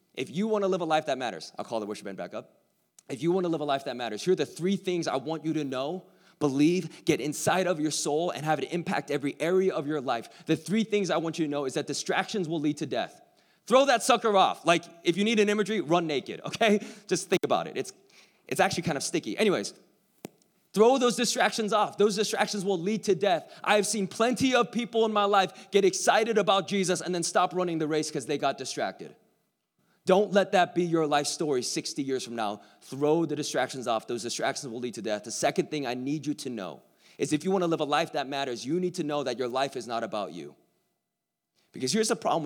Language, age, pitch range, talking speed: English, 20-39, 140-195 Hz, 250 wpm